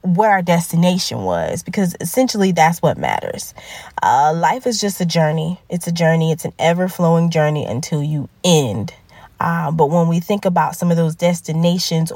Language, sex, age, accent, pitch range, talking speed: English, female, 20-39, American, 160-200 Hz, 175 wpm